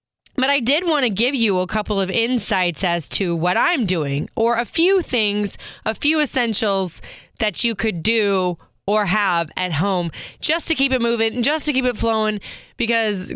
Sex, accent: female, American